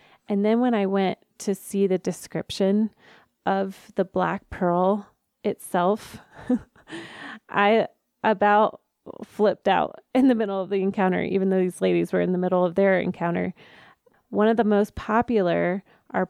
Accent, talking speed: American, 150 wpm